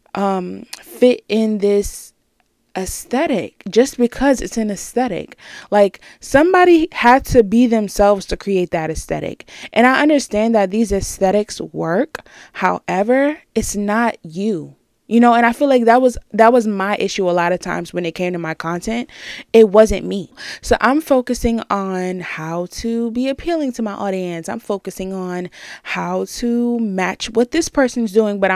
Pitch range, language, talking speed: 185-235 Hz, English, 165 wpm